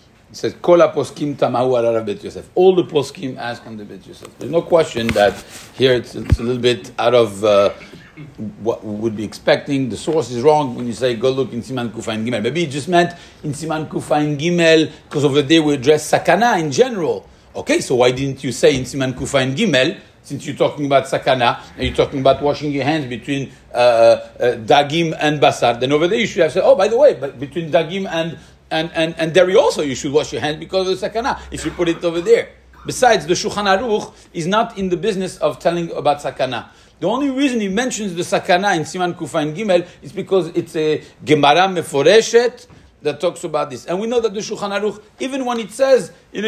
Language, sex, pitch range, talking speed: English, male, 135-200 Hz, 215 wpm